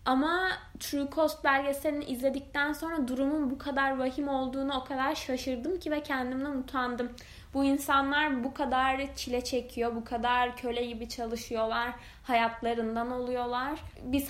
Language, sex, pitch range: Turkish, female, 235-275 Hz